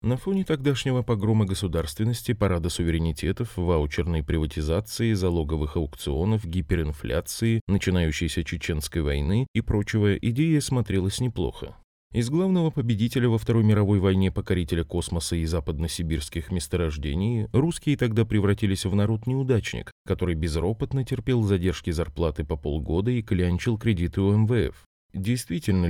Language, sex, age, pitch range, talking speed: Russian, male, 20-39, 85-115 Hz, 115 wpm